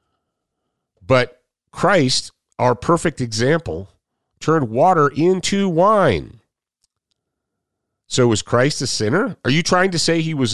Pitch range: 100-140 Hz